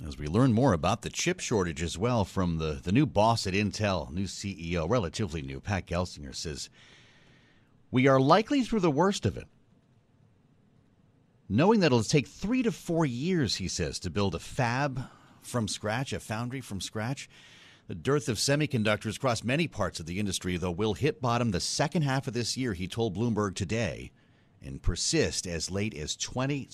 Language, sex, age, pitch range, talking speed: English, male, 40-59, 95-130 Hz, 185 wpm